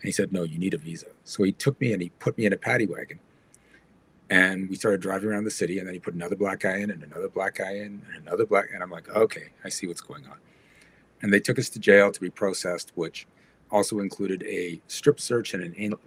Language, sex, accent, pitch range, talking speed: English, male, American, 95-115 Hz, 265 wpm